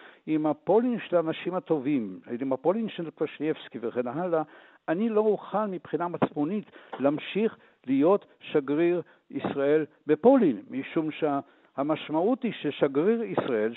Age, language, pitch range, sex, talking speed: 60-79, Hebrew, 135-225 Hz, male, 120 wpm